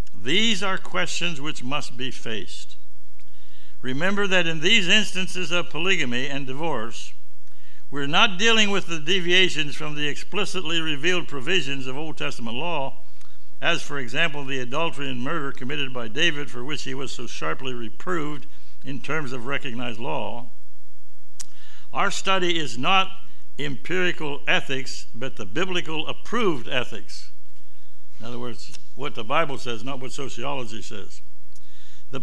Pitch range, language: 120-170 Hz, English